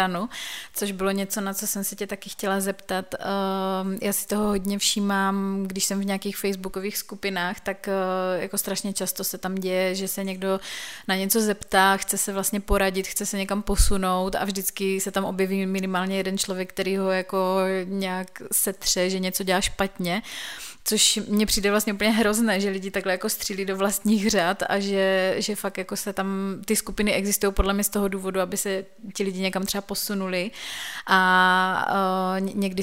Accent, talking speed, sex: native, 180 wpm, female